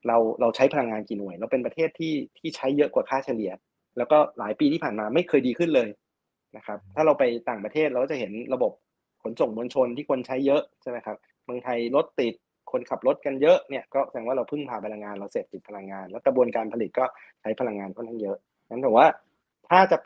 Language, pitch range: Thai, 115-155 Hz